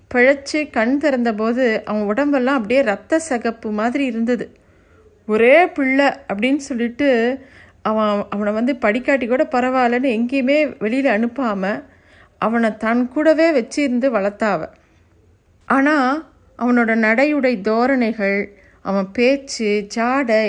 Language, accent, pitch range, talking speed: Tamil, native, 210-275 Hz, 95 wpm